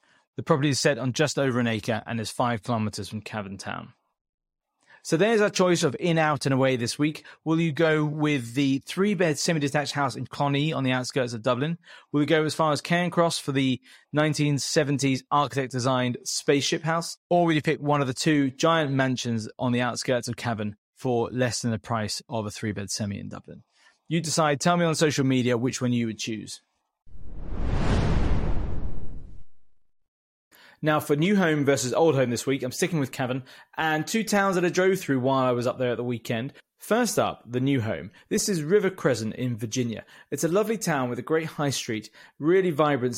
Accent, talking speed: British, 200 wpm